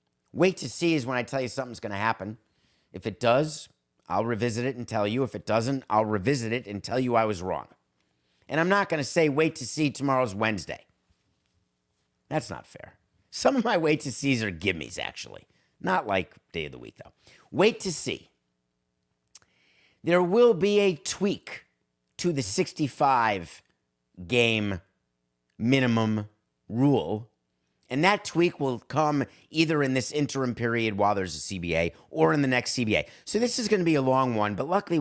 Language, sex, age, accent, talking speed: English, male, 50-69, American, 185 wpm